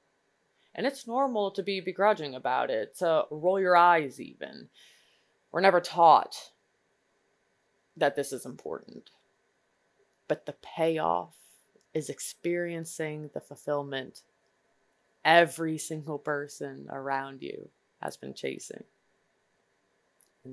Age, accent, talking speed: 20-39, American, 105 wpm